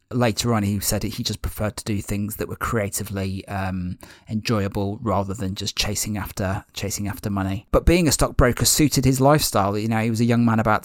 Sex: male